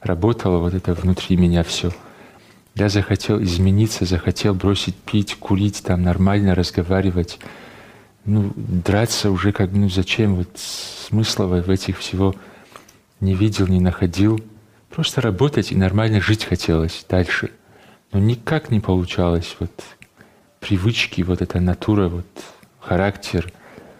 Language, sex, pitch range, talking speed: Russian, male, 90-110 Hz, 125 wpm